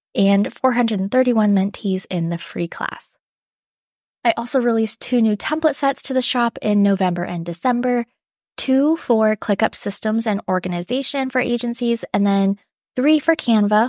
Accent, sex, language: American, female, English